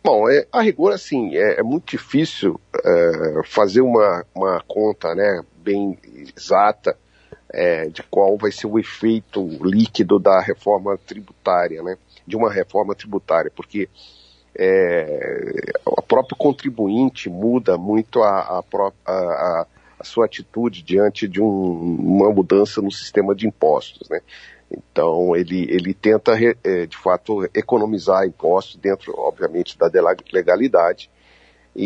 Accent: Brazilian